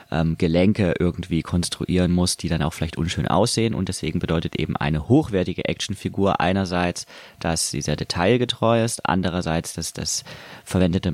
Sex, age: male, 30-49